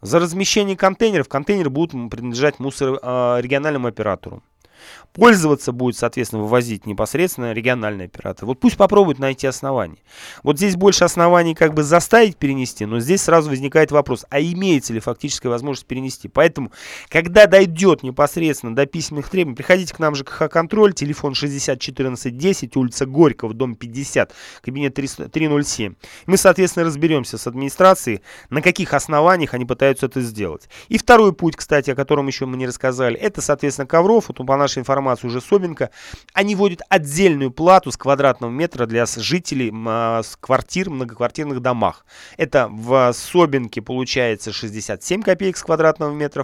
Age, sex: 20-39, male